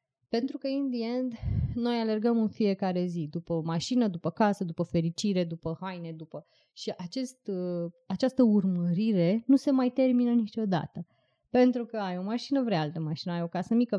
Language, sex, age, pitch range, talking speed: Romanian, female, 20-39, 170-230 Hz, 165 wpm